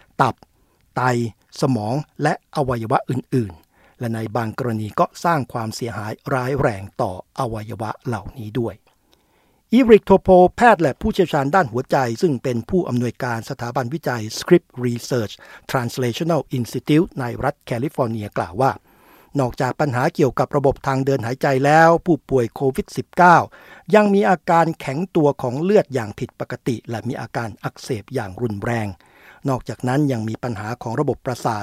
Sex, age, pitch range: male, 60-79, 120-155 Hz